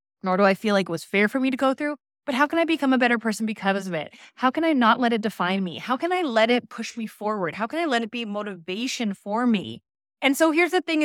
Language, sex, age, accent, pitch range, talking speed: English, female, 20-39, American, 195-250 Hz, 295 wpm